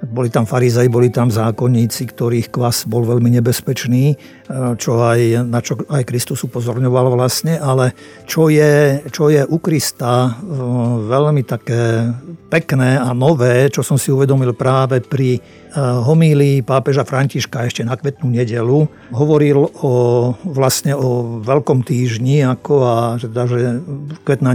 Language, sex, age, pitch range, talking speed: Slovak, male, 50-69, 120-135 Hz, 130 wpm